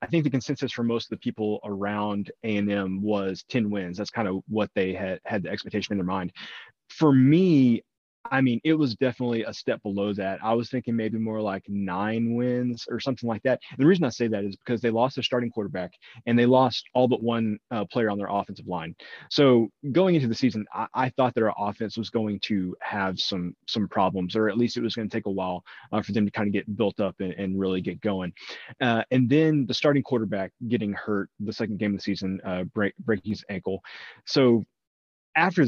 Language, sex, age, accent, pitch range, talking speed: English, male, 20-39, American, 100-125 Hz, 230 wpm